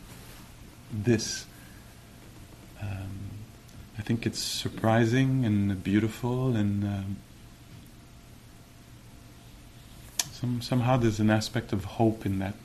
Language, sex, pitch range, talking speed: English, male, 105-115 Hz, 85 wpm